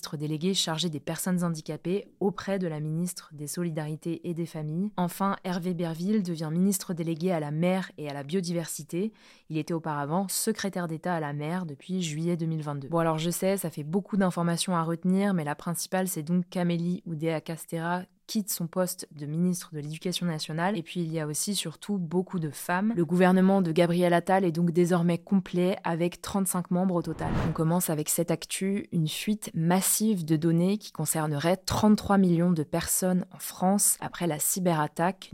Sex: female